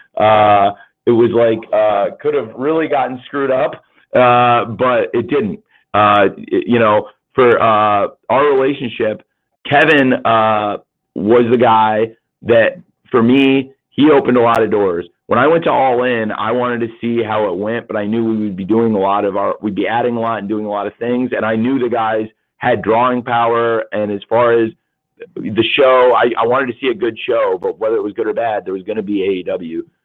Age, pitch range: 40-59, 105-130 Hz